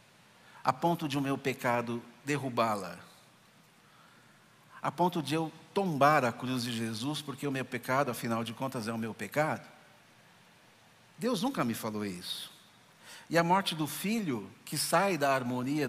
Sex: male